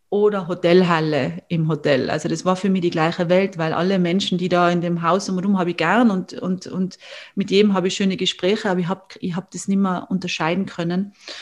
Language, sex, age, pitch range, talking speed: German, female, 30-49, 175-200 Hz, 235 wpm